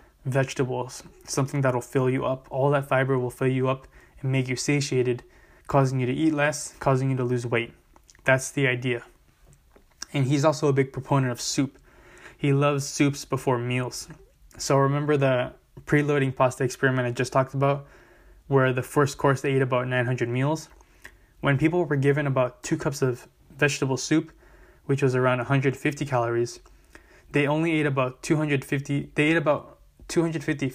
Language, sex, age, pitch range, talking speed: English, male, 20-39, 125-145 Hz, 170 wpm